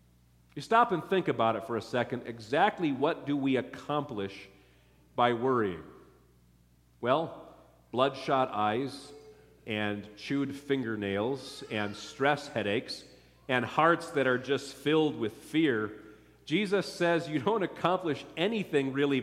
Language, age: English, 40-59